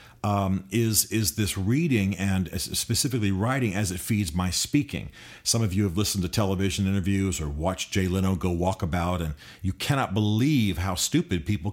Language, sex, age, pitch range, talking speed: English, male, 40-59, 95-120 Hz, 180 wpm